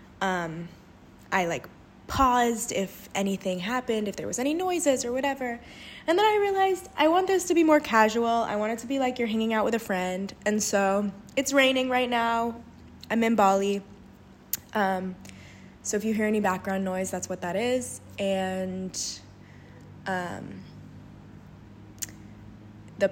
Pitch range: 180-235 Hz